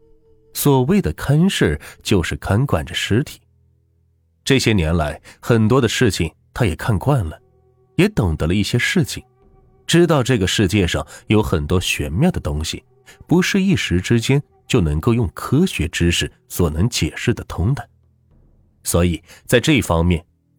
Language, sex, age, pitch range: Chinese, male, 30-49, 85-125 Hz